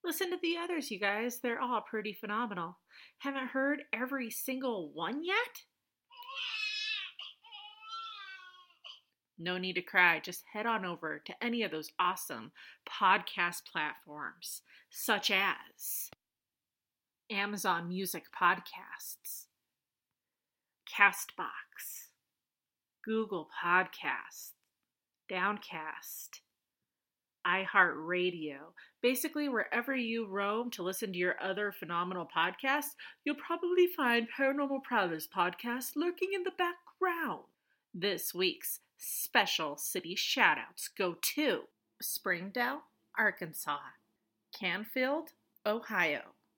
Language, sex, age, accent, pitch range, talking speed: English, female, 30-49, American, 180-305 Hz, 95 wpm